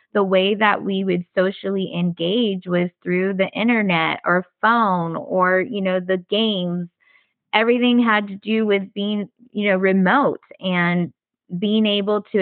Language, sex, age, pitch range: English, female, 20-39, 190-230 Hz